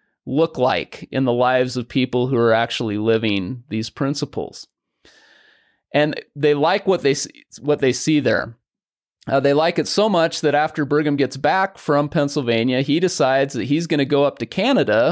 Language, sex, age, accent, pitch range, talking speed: English, male, 30-49, American, 125-150 Hz, 185 wpm